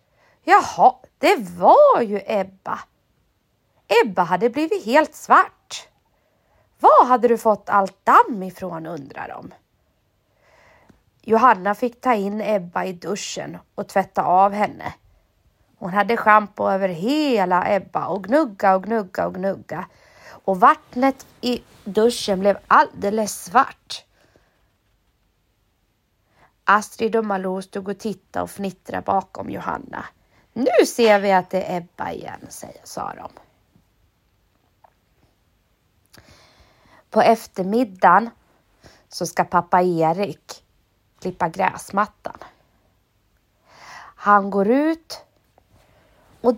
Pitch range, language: 185-235 Hz, English